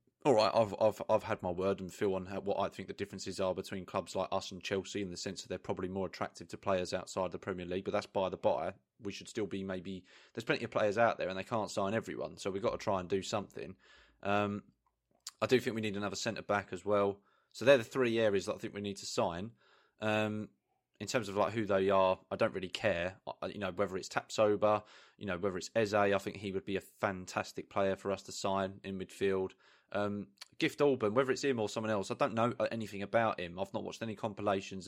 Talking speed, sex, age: 255 wpm, male, 20-39